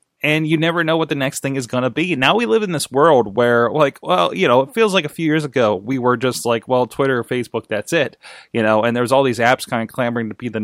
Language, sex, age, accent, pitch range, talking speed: English, male, 20-39, American, 120-155 Hz, 295 wpm